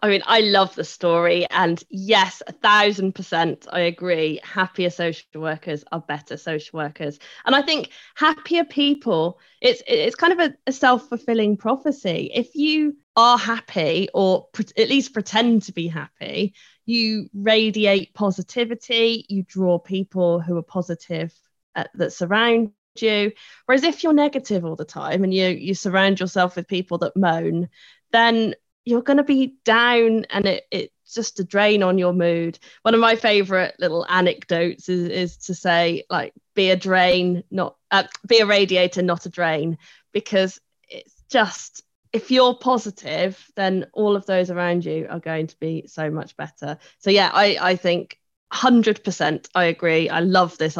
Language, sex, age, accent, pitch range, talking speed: English, female, 20-39, British, 170-225 Hz, 165 wpm